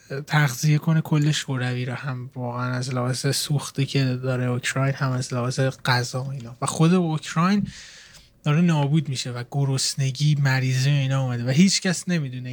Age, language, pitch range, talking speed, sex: 20-39, Persian, 130-165 Hz, 170 wpm, male